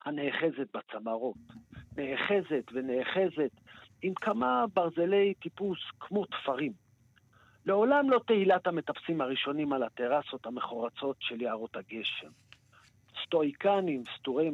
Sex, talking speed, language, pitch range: male, 95 wpm, Hebrew, 120-190 Hz